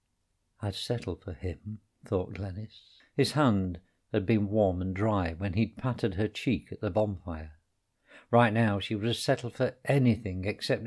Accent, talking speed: British, 165 wpm